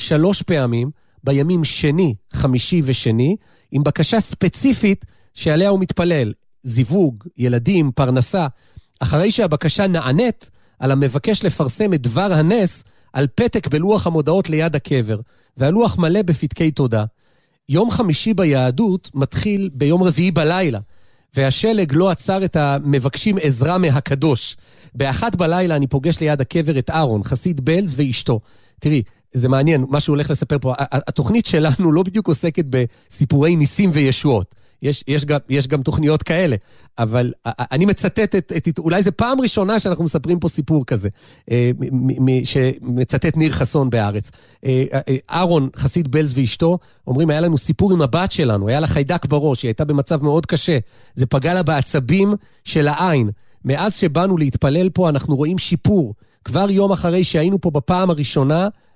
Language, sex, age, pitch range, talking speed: Hebrew, male, 40-59, 130-175 Hz, 140 wpm